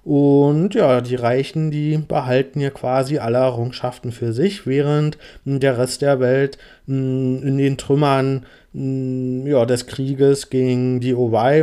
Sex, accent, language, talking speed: male, German, German, 145 wpm